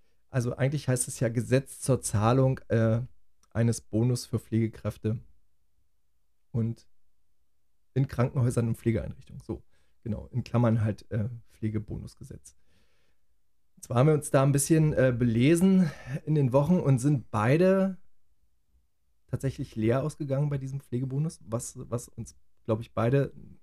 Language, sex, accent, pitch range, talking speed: German, male, German, 110-130 Hz, 135 wpm